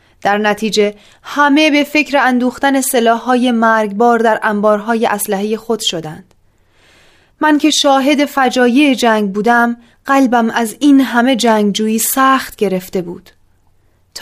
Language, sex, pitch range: Persian, female, 195-250 Hz